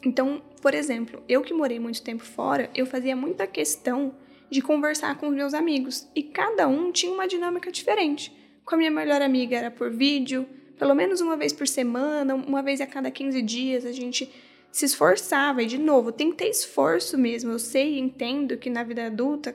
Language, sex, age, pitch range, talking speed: Portuguese, female, 10-29, 245-295 Hz, 205 wpm